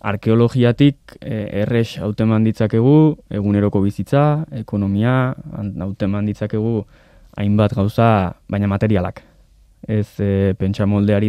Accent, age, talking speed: Spanish, 20-39, 85 wpm